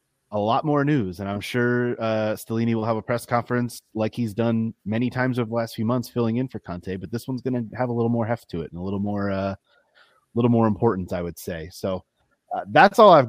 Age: 30-49